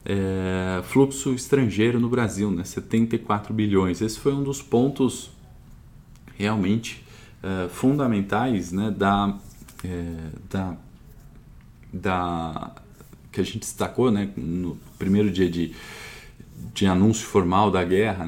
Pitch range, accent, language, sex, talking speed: 90-110 Hz, Brazilian, Portuguese, male, 95 wpm